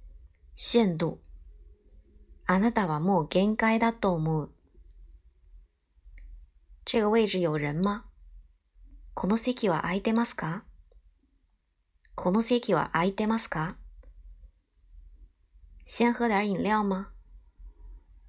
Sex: male